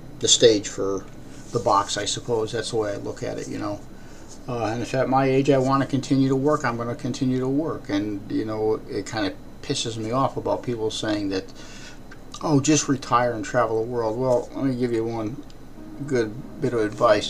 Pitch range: 110-145 Hz